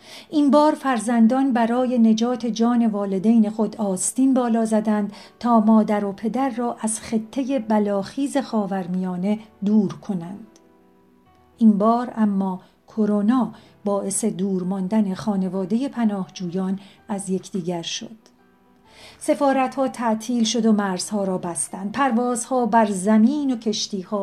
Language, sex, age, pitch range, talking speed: Persian, female, 50-69, 200-235 Hz, 115 wpm